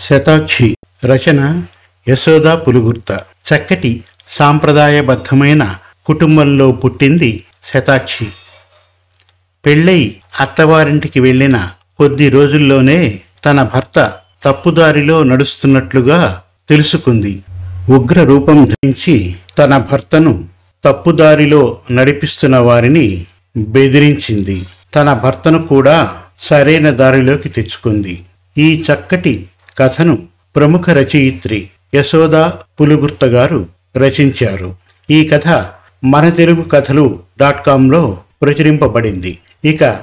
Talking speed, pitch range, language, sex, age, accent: 70 wpm, 110-150 Hz, Telugu, male, 50-69, native